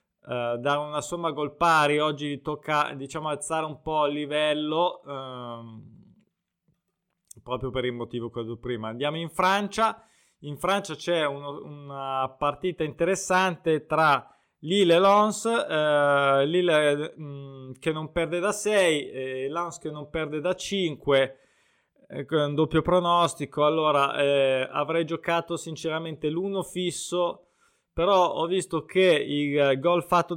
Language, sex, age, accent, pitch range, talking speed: Italian, male, 20-39, native, 135-160 Hz, 140 wpm